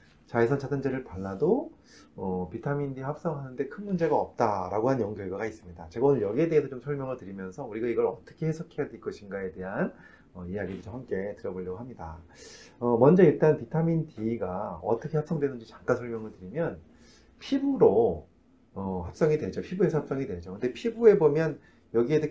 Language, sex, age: Korean, male, 30-49